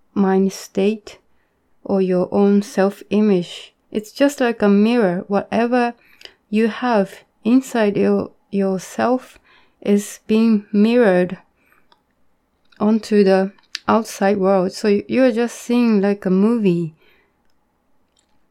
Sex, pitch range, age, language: female, 195-225 Hz, 20-39, Japanese